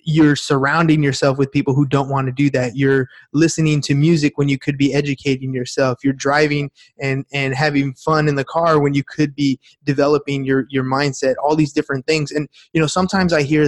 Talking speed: 210 wpm